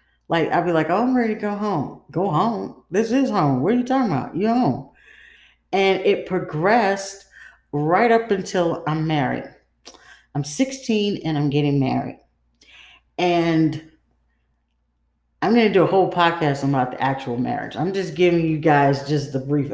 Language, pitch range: English, 145-195 Hz